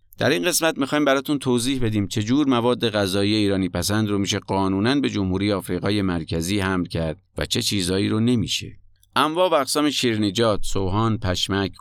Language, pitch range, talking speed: Persian, 95-115 Hz, 170 wpm